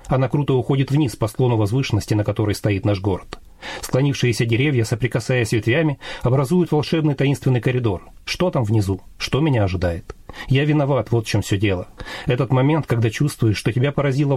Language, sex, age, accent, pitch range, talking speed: Russian, male, 40-59, native, 110-140 Hz, 165 wpm